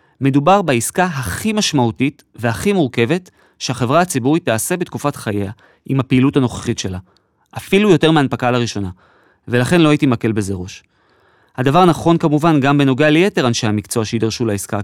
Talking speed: 140 wpm